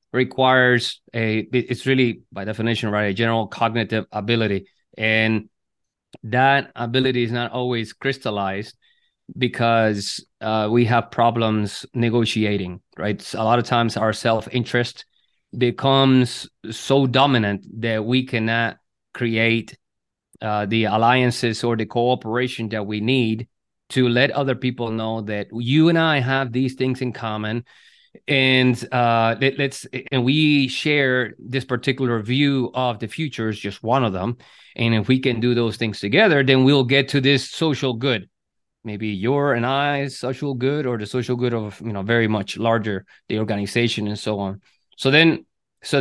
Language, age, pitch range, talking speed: English, 30-49, 110-135 Hz, 155 wpm